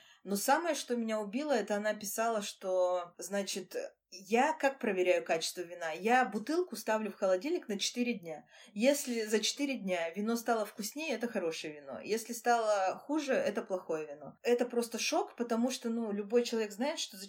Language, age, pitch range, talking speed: Russian, 20-39, 190-240 Hz, 175 wpm